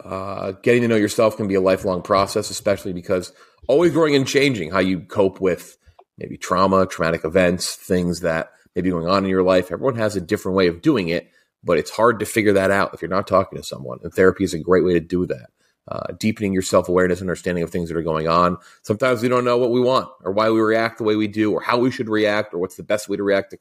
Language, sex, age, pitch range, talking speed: English, male, 30-49, 95-120 Hz, 260 wpm